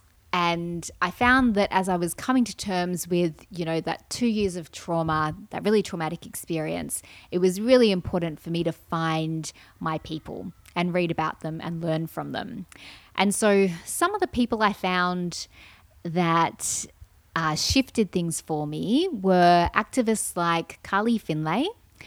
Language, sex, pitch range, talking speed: English, female, 165-210 Hz, 160 wpm